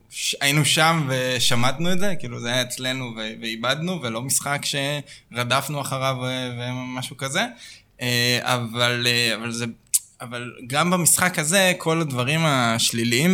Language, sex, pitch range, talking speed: Hebrew, male, 120-140 Hz, 125 wpm